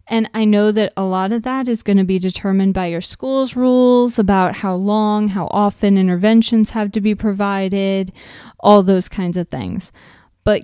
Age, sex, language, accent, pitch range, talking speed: 20-39, female, English, American, 180-220 Hz, 185 wpm